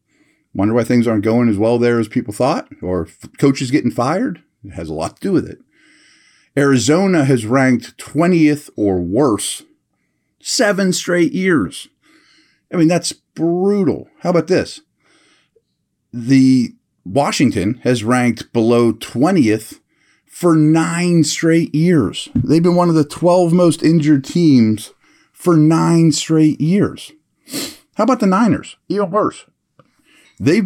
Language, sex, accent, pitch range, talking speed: English, male, American, 120-170 Hz, 135 wpm